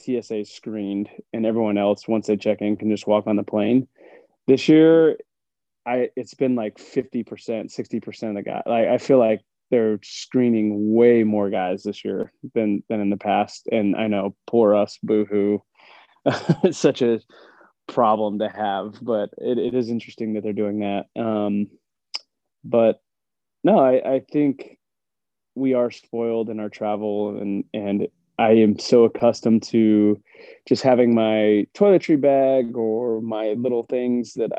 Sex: male